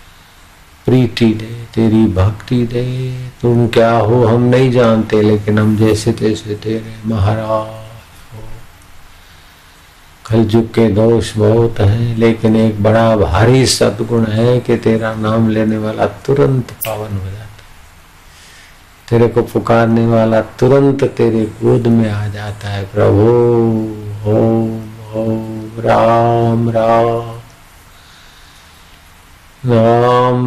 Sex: male